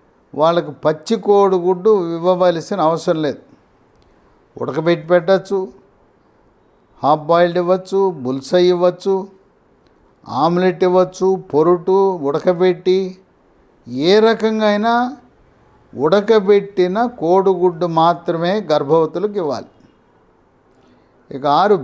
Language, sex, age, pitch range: English, male, 60-79, 165-200 Hz